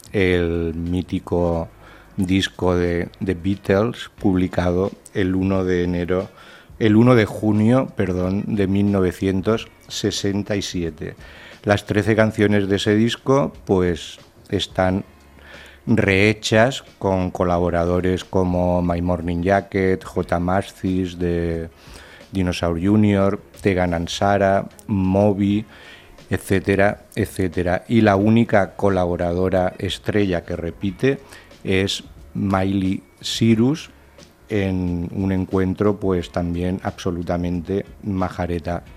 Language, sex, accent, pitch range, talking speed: Spanish, male, Spanish, 90-105 Hz, 90 wpm